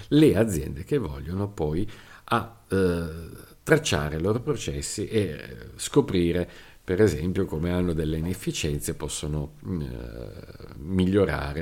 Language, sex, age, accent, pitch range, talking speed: Italian, male, 50-69, native, 80-95 Hz, 120 wpm